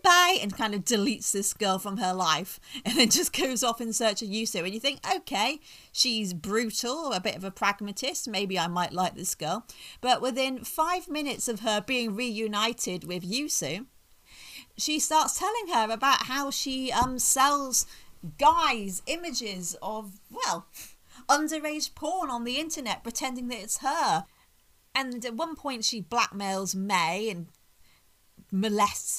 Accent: British